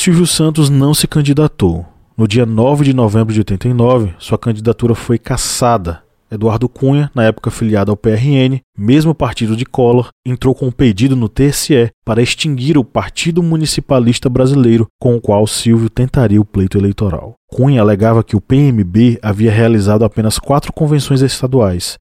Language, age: Portuguese, 20-39